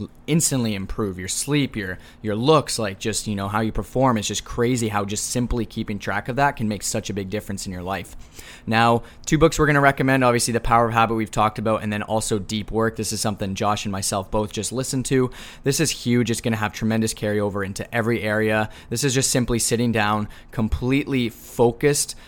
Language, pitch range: English, 105-120 Hz